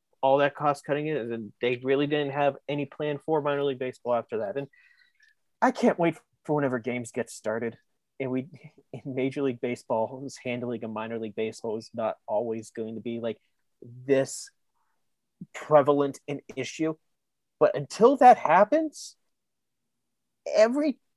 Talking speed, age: 155 wpm, 30-49